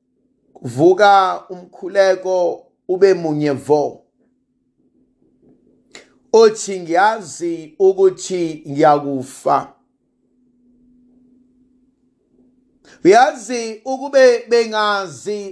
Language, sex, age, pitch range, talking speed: English, male, 50-69, 210-275 Hz, 45 wpm